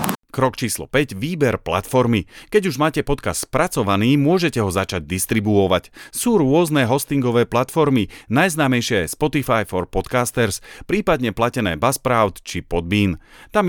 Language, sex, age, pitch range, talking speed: Slovak, male, 40-59, 95-140 Hz, 125 wpm